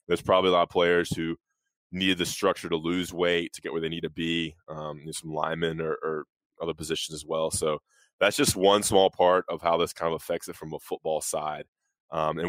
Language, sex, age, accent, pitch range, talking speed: English, male, 20-39, American, 80-95 Hz, 235 wpm